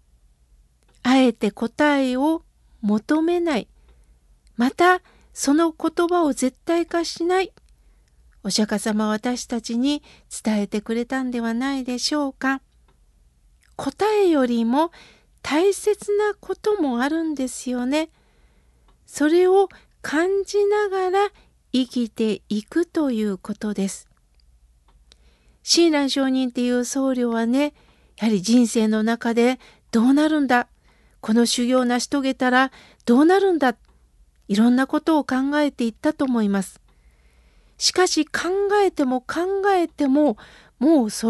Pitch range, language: 225-330 Hz, Japanese